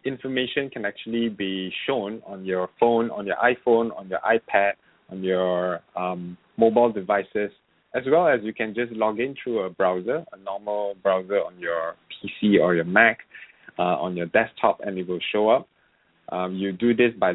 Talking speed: 185 wpm